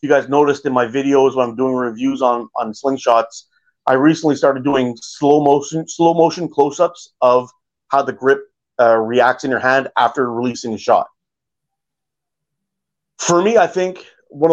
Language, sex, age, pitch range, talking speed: English, male, 30-49, 130-165 Hz, 170 wpm